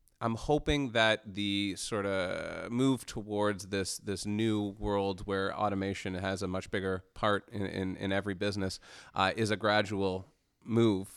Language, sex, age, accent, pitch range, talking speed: English, male, 30-49, American, 95-105 Hz, 155 wpm